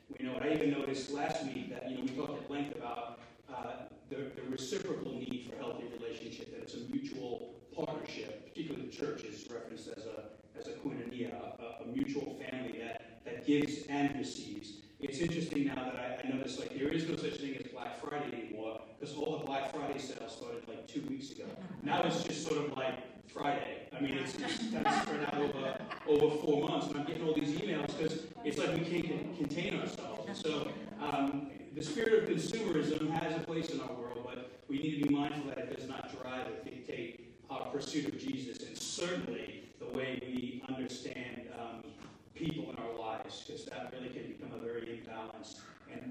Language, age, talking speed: English, 30-49, 200 wpm